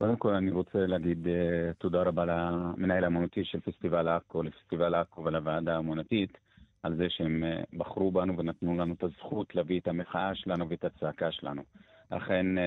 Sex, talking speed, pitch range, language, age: male, 155 wpm, 90-105 Hz, Hebrew, 40-59